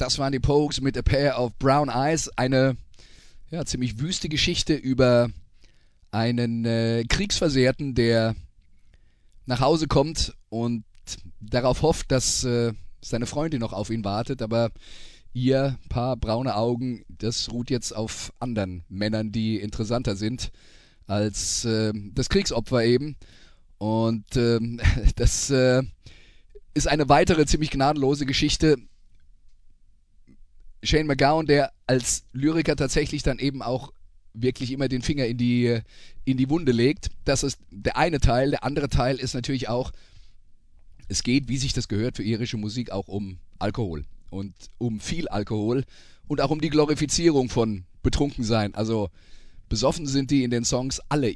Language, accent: German, German